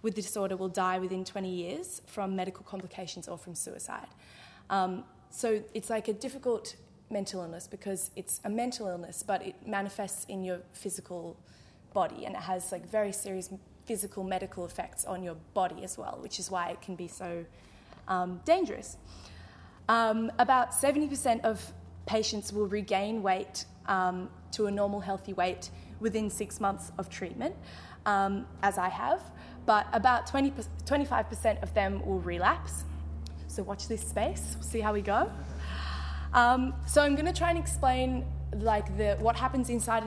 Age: 20-39